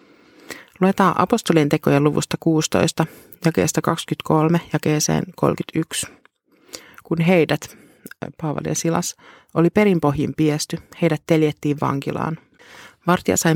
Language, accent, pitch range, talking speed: Finnish, native, 150-180 Hz, 95 wpm